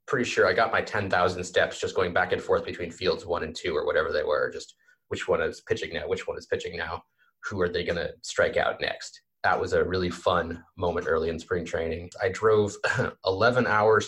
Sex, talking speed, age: male, 235 wpm, 30-49